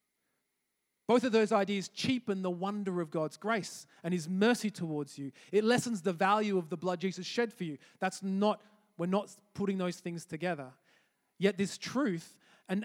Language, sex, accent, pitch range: English, male, Australian, 155-200 Hz